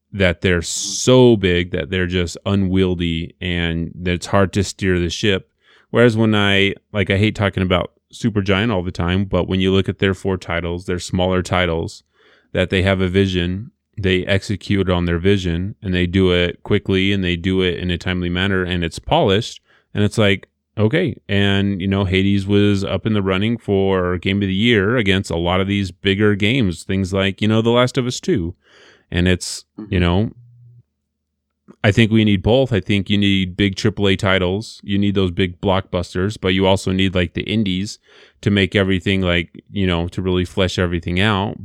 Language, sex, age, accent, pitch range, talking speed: English, male, 30-49, American, 90-100 Hz, 195 wpm